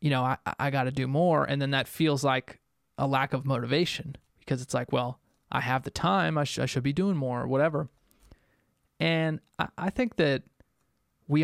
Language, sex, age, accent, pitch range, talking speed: English, male, 20-39, American, 130-155 Hz, 210 wpm